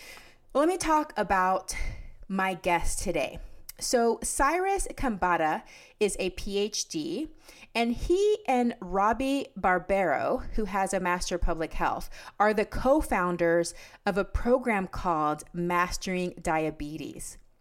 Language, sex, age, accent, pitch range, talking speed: English, female, 30-49, American, 175-235 Hz, 115 wpm